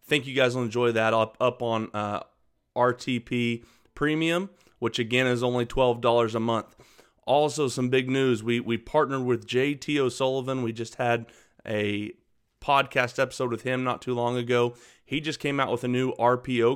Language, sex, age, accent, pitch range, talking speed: English, male, 30-49, American, 115-130 Hz, 175 wpm